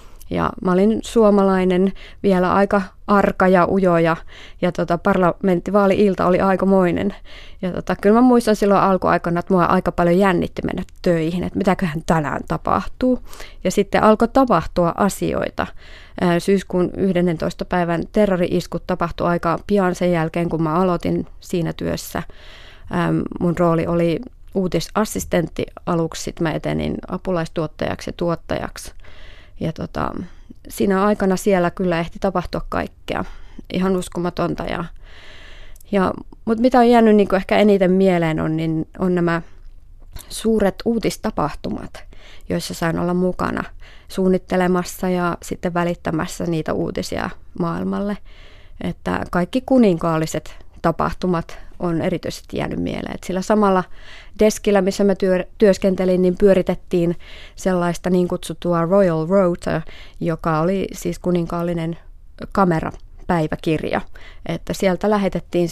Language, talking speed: Finnish, 120 wpm